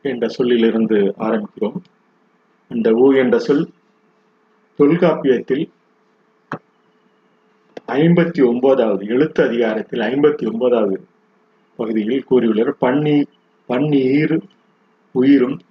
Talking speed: 70 wpm